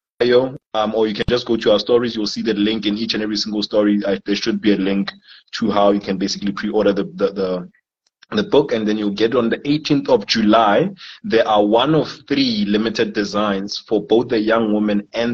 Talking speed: 225 wpm